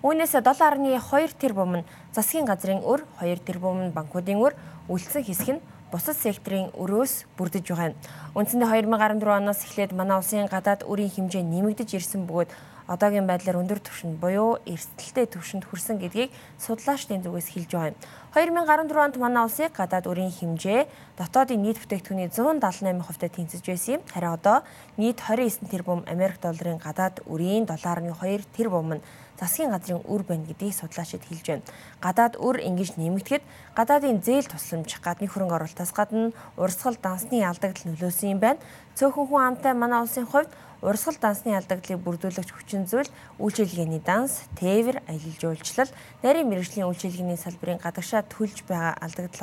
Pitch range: 175-230 Hz